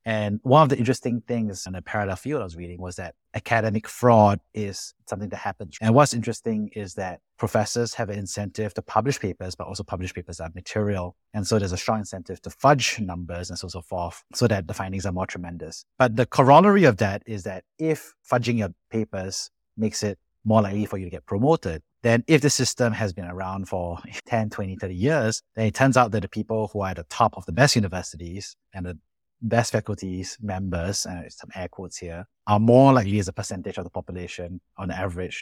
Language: English